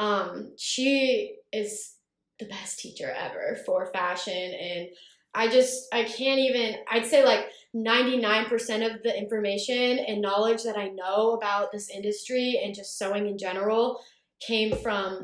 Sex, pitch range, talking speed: female, 200-250 Hz, 145 wpm